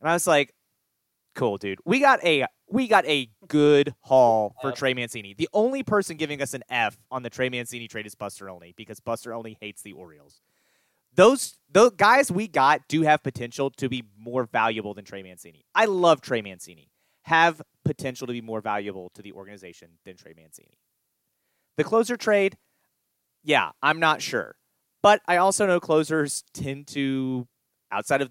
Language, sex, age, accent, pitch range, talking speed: English, male, 30-49, American, 115-150 Hz, 180 wpm